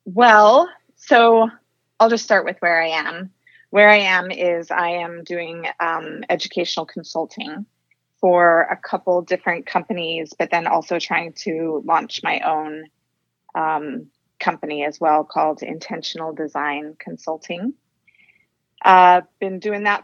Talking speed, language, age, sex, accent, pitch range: 130 wpm, English, 30-49, female, American, 160-195 Hz